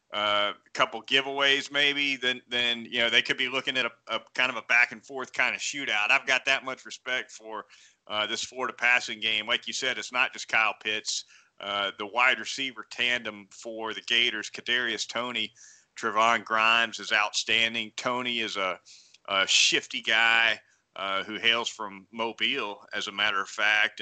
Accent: American